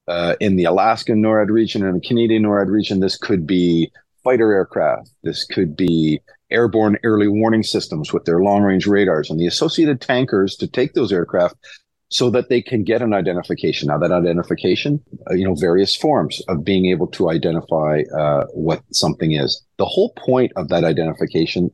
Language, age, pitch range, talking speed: English, 50-69, 85-110 Hz, 175 wpm